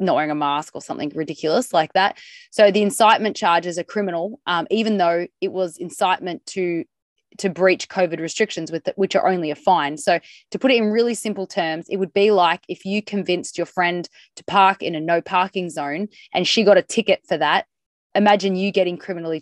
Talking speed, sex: 210 wpm, female